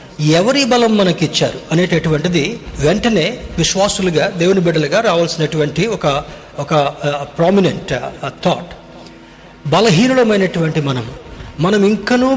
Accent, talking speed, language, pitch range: native, 80 wpm, Telugu, 165-215 Hz